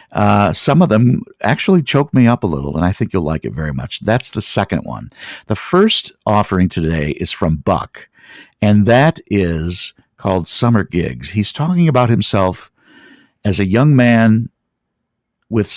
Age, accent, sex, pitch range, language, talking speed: 50-69, American, male, 85-135 Hz, English, 170 wpm